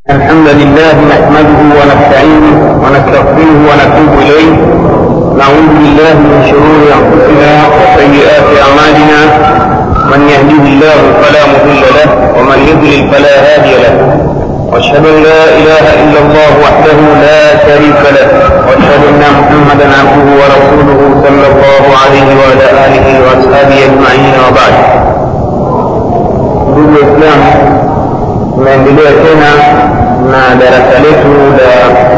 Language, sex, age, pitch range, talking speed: Swahili, male, 50-69, 140-150 Hz, 105 wpm